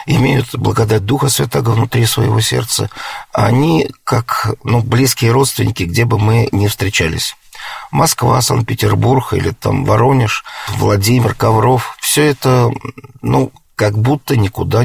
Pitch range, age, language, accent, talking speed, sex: 105-130 Hz, 40-59, Russian, native, 120 wpm, male